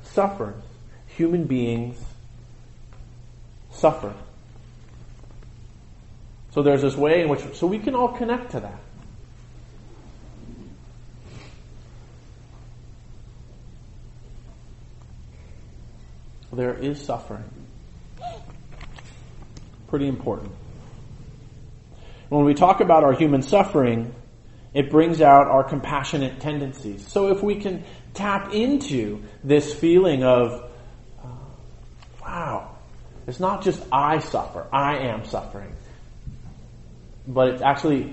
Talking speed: 90 wpm